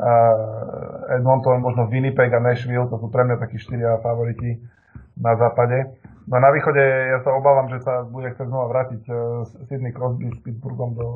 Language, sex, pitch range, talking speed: Slovak, male, 115-130 Hz, 185 wpm